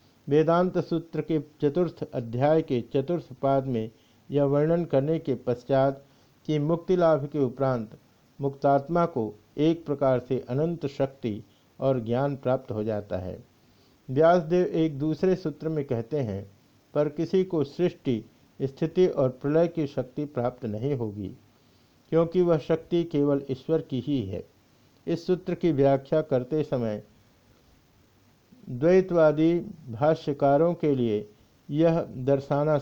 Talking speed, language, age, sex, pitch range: 130 wpm, Hindi, 50-69, male, 125-160 Hz